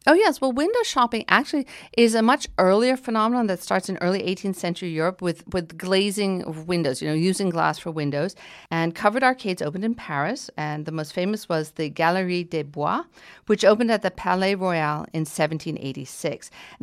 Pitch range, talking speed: 160-215 Hz, 180 wpm